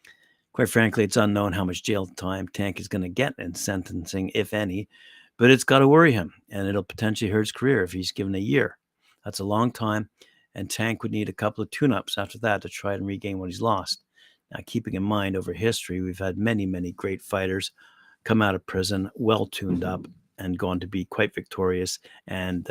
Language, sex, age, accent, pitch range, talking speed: English, male, 60-79, American, 95-115 Hz, 210 wpm